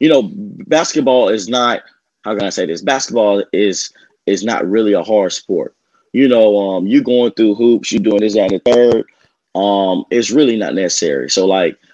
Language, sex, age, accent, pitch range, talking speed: English, male, 20-39, American, 100-120 Hz, 190 wpm